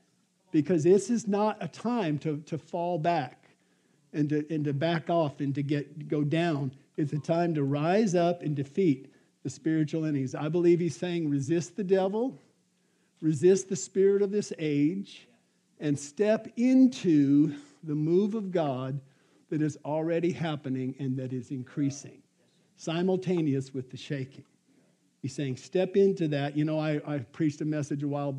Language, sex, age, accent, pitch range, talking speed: English, male, 50-69, American, 140-175 Hz, 165 wpm